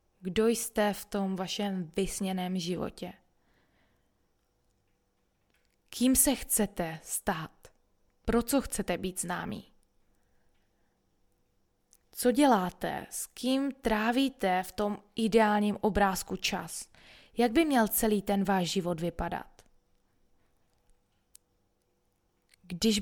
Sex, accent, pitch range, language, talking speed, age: female, native, 180-235 Hz, Czech, 90 wpm, 20-39